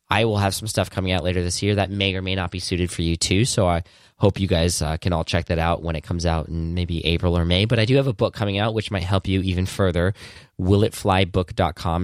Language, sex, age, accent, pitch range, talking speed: English, male, 10-29, American, 85-110 Hz, 275 wpm